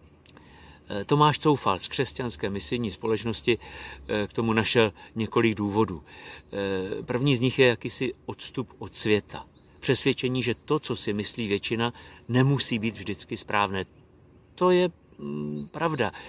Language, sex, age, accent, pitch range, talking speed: Czech, male, 50-69, native, 95-125 Hz, 120 wpm